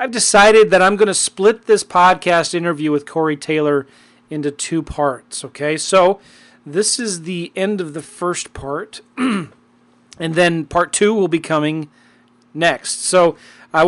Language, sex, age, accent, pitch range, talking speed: English, male, 40-59, American, 150-190 Hz, 155 wpm